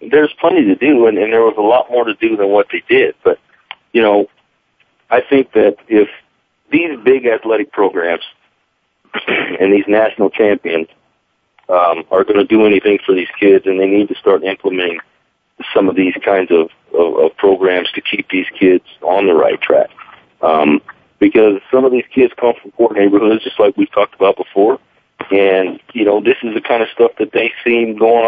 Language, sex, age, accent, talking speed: English, male, 40-59, American, 195 wpm